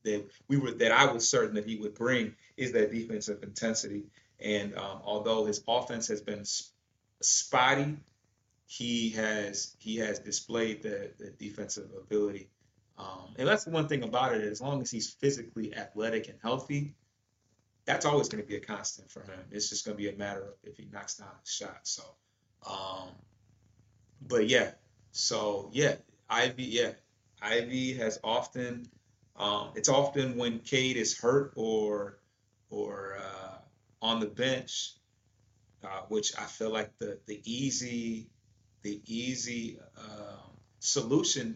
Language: English